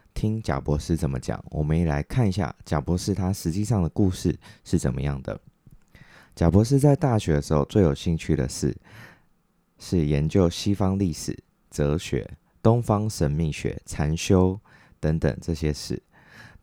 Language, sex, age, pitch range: Chinese, male, 20-39, 75-105 Hz